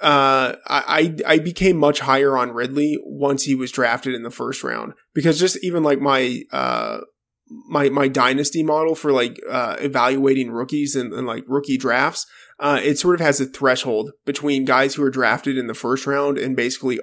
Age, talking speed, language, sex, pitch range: 20-39, 190 wpm, English, male, 125-145 Hz